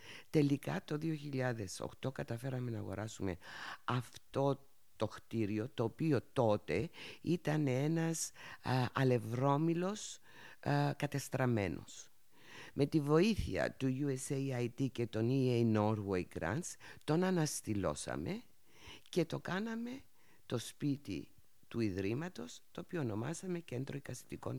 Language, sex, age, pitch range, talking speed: Greek, female, 50-69, 105-150 Hz, 100 wpm